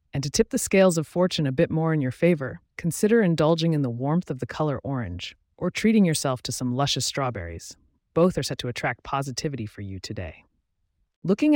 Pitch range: 125-170 Hz